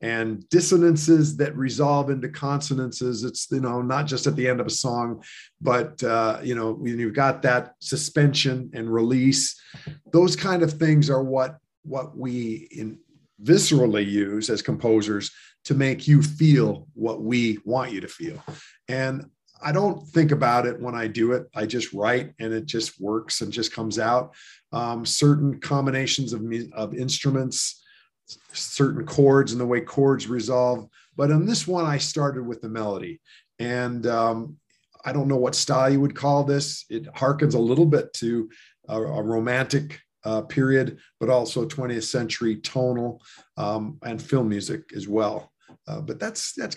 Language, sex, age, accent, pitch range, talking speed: English, male, 40-59, American, 120-150 Hz, 165 wpm